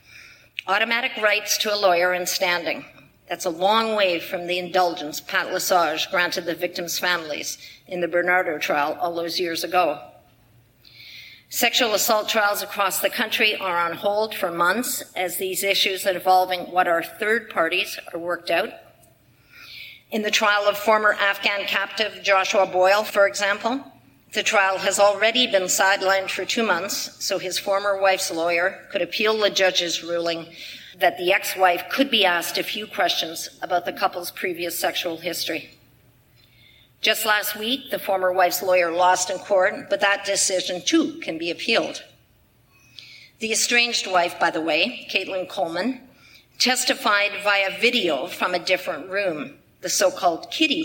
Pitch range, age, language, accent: 175-210 Hz, 50-69, English, American